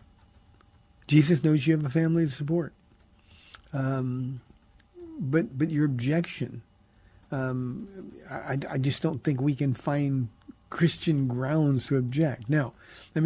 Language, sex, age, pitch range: English, male, 50-69, 130-170 Hz